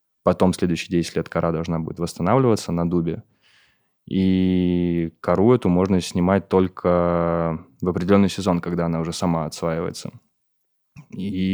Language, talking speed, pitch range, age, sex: Russian, 135 wpm, 85-95 Hz, 20-39, male